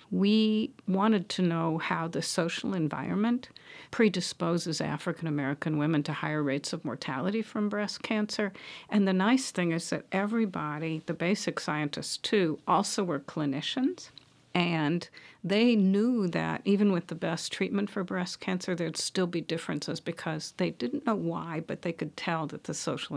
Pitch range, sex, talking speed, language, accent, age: 155-195 Hz, female, 160 wpm, English, American, 50-69